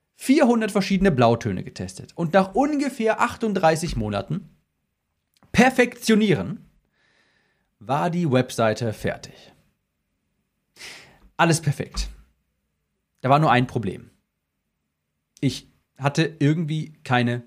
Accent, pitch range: German, 125-190 Hz